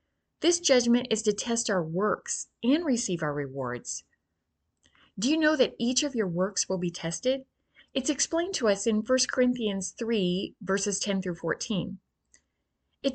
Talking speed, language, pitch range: 160 wpm, English, 185-255 Hz